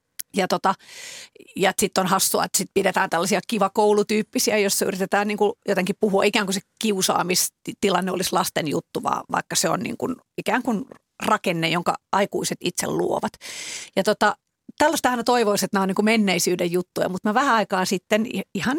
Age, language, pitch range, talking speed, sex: 40-59, Finnish, 185-230 Hz, 170 wpm, female